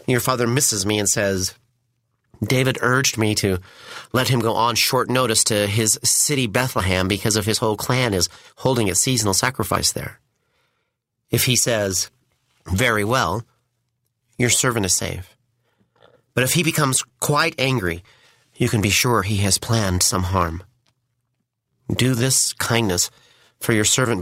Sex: male